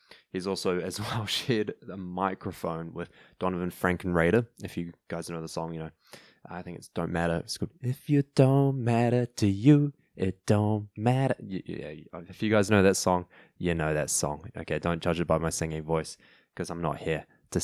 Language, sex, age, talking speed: English, male, 10-29, 195 wpm